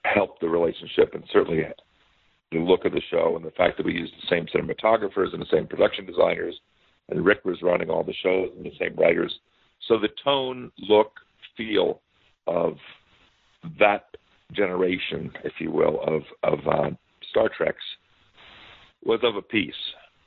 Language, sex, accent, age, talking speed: English, male, American, 50-69, 165 wpm